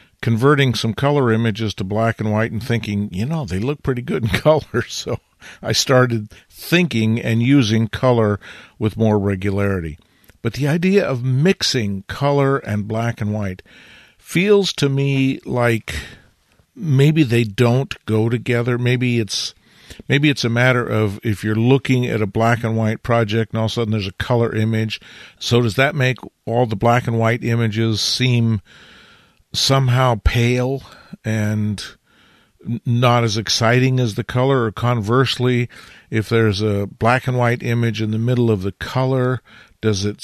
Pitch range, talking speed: 110-125 Hz, 165 wpm